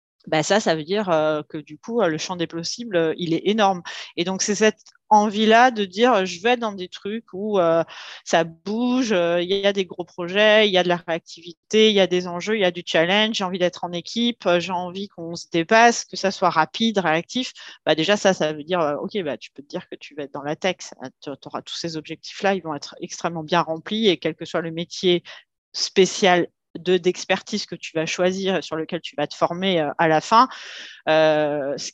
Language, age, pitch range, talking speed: French, 30-49, 160-200 Hz, 230 wpm